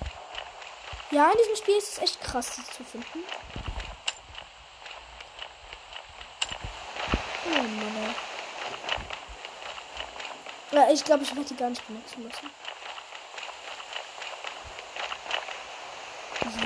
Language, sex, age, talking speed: English, female, 20-39, 85 wpm